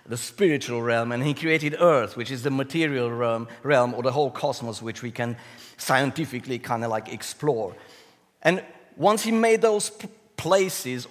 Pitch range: 125-185 Hz